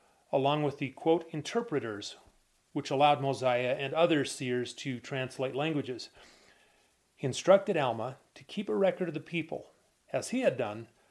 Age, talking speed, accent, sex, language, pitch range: 30-49, 150 wpm, American, male, English, 140-170 Hz